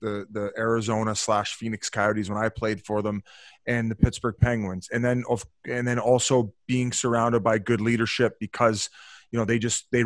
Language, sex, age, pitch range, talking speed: English, male, 20-39, 110-125 Hz, 190 wpm